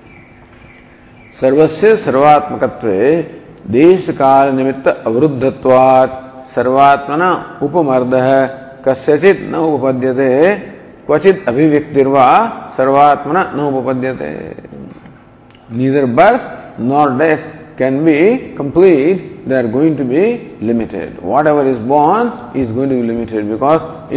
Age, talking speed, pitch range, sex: 50-69, 95 wpm, 125-160 Hz, male